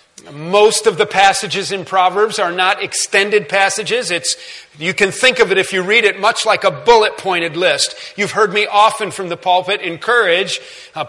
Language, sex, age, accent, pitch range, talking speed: English, male, 40-59, American, 180-220 Hz, 190 wpm